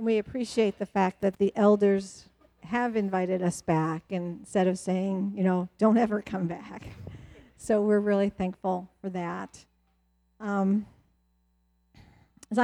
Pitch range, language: 180-220 Hz, English